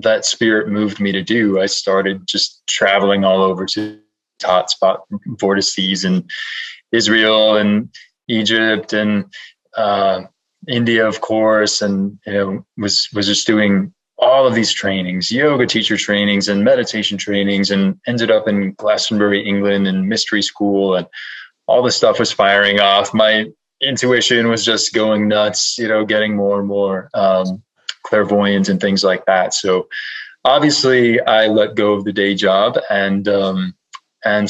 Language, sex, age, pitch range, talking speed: English, male, 20-39, 95-110 Hz, 150 wpm